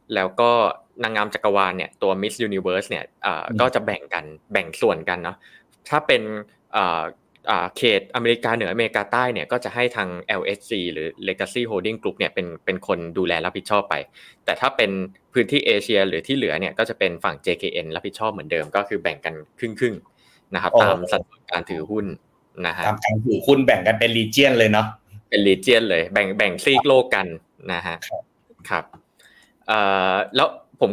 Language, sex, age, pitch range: Thai, male, 20-39, 95-125 Hz